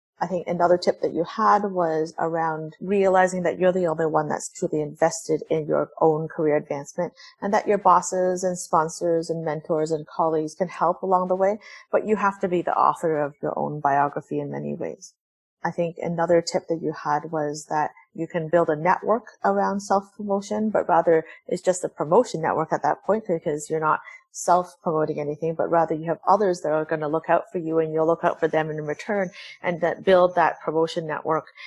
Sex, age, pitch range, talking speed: female, 30-49, 155-180 Hz, 210 wpm